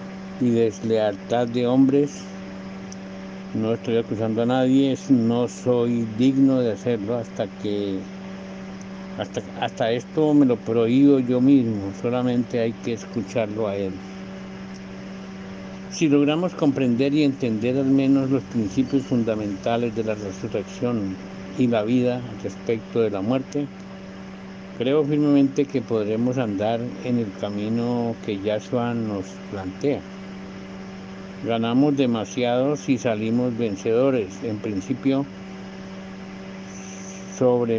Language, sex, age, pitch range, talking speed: Spanish, male, 60-79, 95-125 Hz, 110 wpm